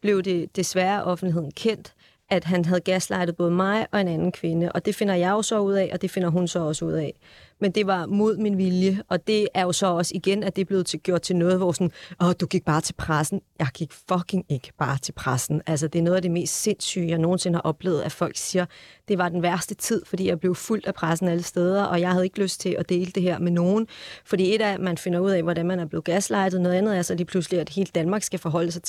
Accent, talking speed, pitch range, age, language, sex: native, 270 wpm, 175-195 Hz, 30-49, Danish, female